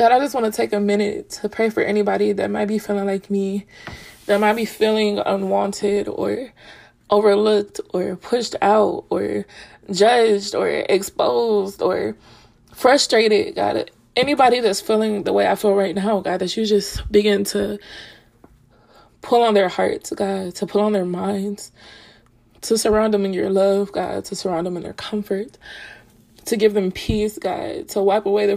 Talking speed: 170 wpm